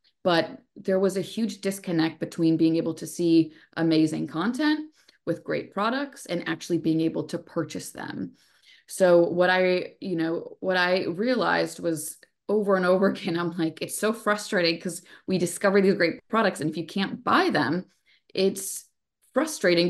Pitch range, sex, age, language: 170-205 Hz, female, 20-39, English